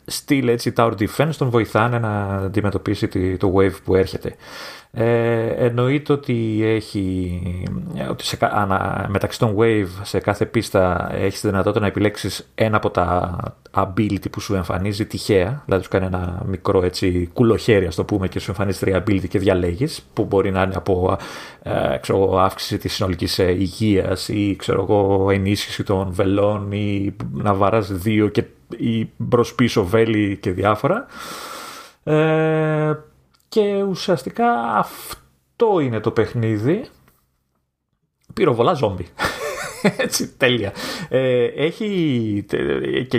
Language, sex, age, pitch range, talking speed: Greek, male, 30-49, 95-115 Hz, 130 wpm